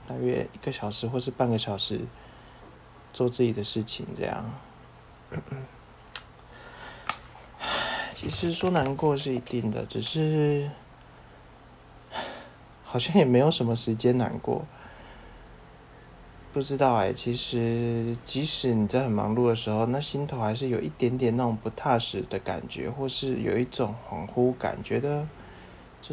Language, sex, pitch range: English, male, 110-135 Hz